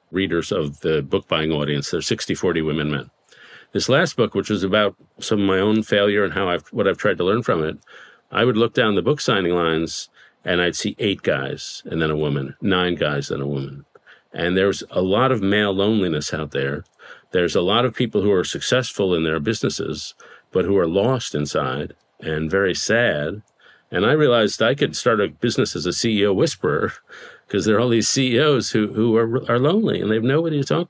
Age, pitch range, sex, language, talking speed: 50-69, 85-125 Hz, male, English, 215 wpm